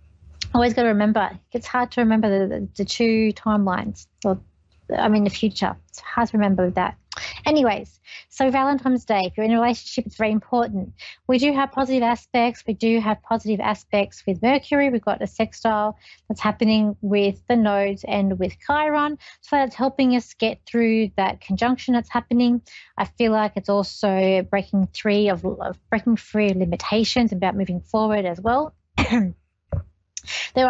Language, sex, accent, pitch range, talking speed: English, female, Australian, 200-240 Hz, 170 wpm